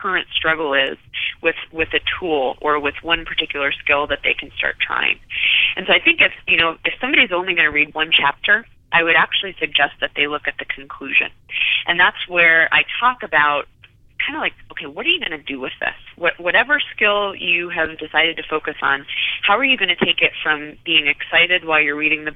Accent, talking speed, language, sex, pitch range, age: American, 225 wpm, English, female, 150-175 Hz, 30-49